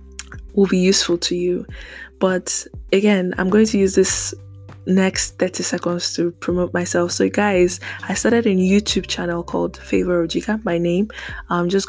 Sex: female